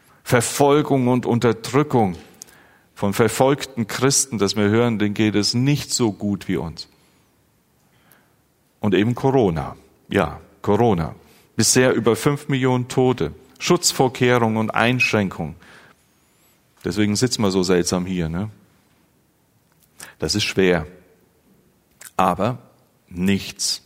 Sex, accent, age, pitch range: male, German, 40-59, 100-135 Hz